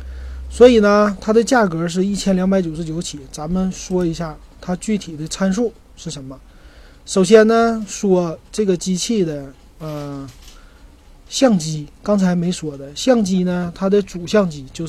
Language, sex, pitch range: Chinese, male, 150-195 Hz